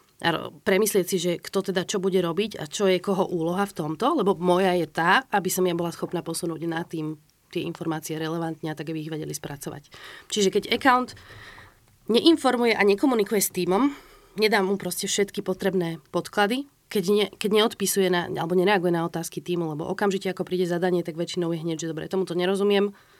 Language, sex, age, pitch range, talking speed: Slovak, female, 30-49, 170-200 Hz, 190 wpm